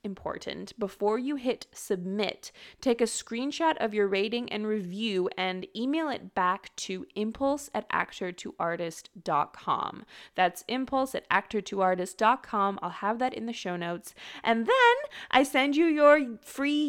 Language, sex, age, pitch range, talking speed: English, female, 20-39, 185-235 Hz, 155 wpm